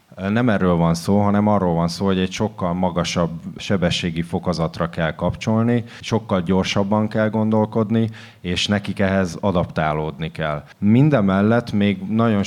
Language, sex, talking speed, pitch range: Hungarian, male, 135 wpm, 90-110 Hz